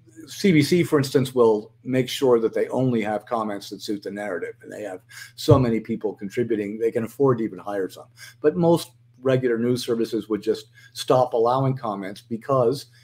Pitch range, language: 120-150 Hz, English